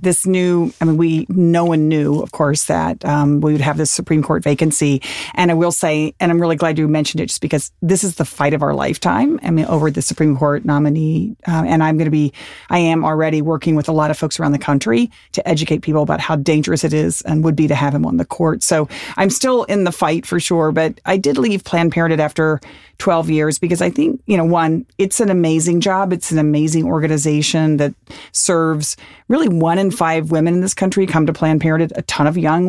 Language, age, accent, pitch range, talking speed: English, 40-59, American, 155-175 Hz, 240 wpm